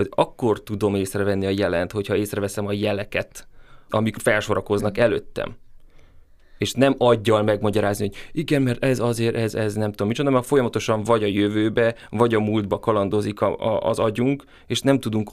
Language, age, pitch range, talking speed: Hungarian, 30-49, 100-120 Hz, 165 wpm